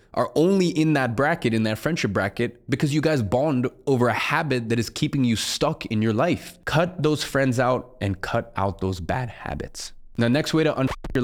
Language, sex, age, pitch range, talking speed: English, male, 20-39, 105-125 Hz, 210 wpm